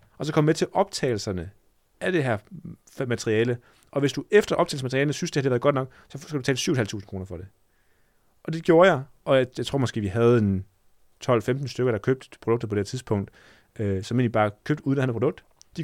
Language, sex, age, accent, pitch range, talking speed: Danish, male, 30-49, native, 110-140 Hz, 225 wpm